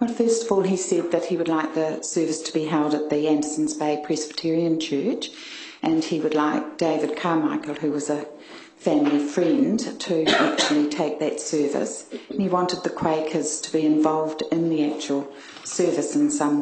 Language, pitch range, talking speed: English, 155-205 Hz, 180 wpm